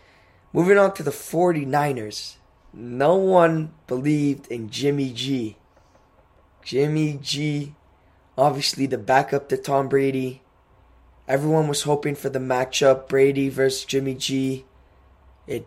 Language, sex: English, male